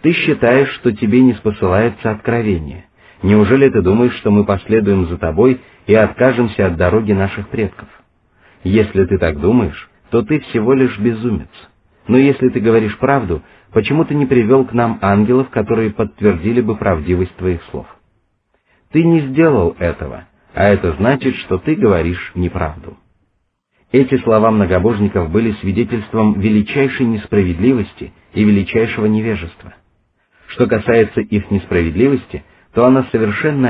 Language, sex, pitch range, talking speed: Russian, male, 95-125 Hz, 135 wpm